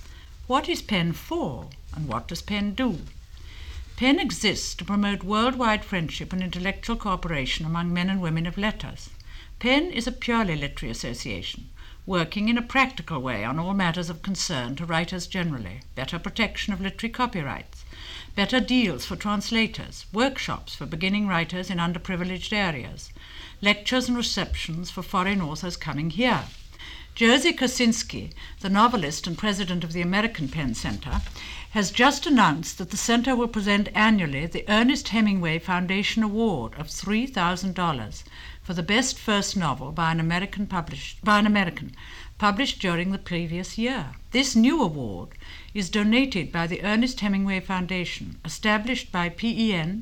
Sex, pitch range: female, 165-220 Hz